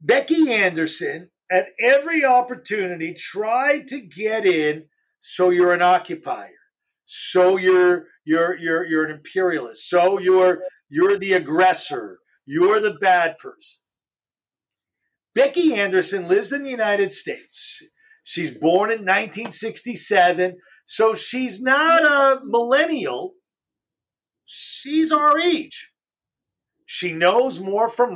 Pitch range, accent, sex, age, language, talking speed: 180-270 Hz, American, male, 50-69, English, 110 wpm